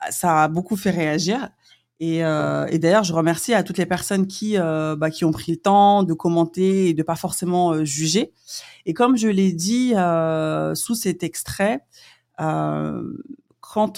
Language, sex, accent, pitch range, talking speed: French, female, French, 165-200 Hz, 180 wpm